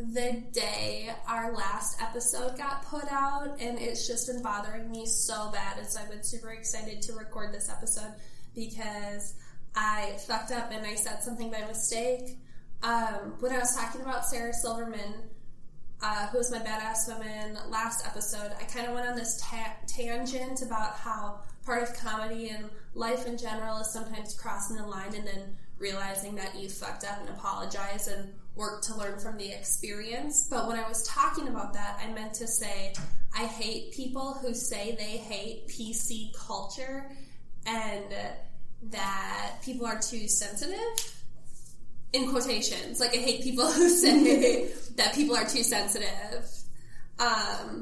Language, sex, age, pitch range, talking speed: English, female, 10-29, 205-245 Hz, 165 wpm